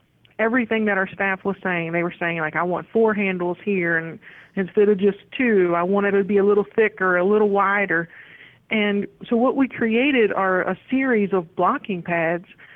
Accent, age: American, 40-59